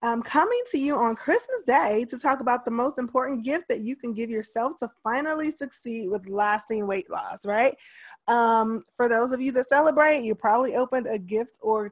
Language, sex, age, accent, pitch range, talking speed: English, female, 20-39, American, 220-285 Hz, 200 wpm